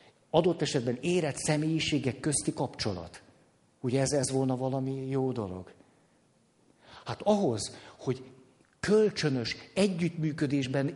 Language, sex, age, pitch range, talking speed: Hungarian, male, 50-69, 125-170 Hz, 100 wpm